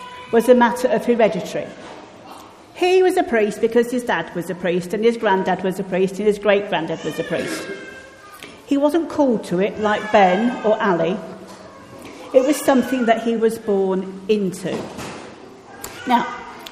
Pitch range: 190-250 Hz